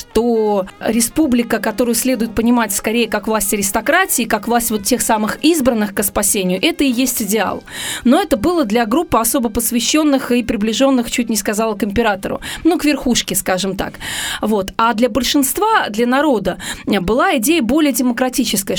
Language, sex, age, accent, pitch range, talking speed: Russian, female, 20-39, native, 215-265 Hz, 160 wpm